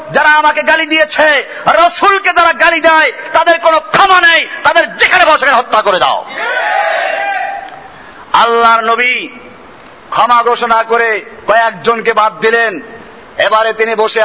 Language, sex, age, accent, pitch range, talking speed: Bengali, male, 50-69, native, 265-335 Hz, 120 wpm